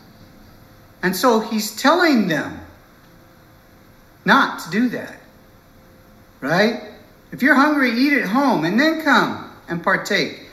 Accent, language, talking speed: American, English, 120 wpm